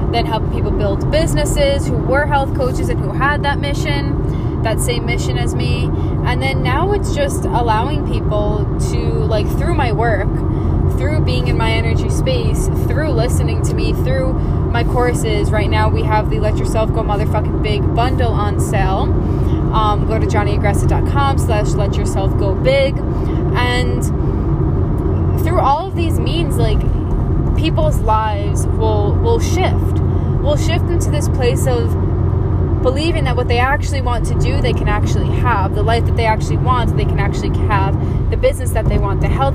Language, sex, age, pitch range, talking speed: English, female, 10-29, 85-100 Hz, 165 wpm